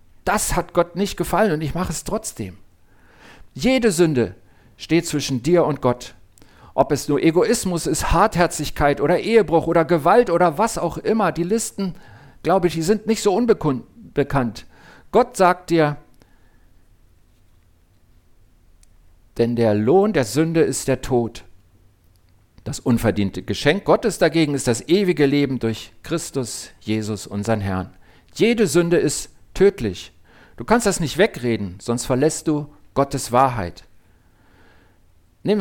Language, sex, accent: German, male, German